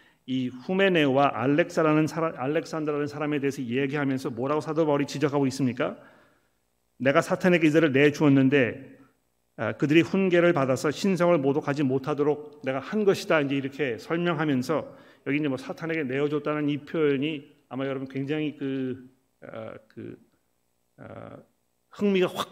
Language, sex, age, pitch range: Korean, male, 40-59, 125-155 Hz